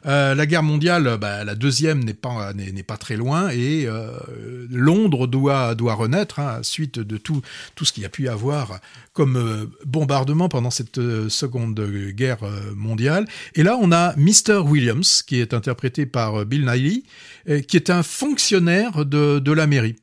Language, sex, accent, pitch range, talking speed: French, male, French, 125-170 Hz, 180 wpm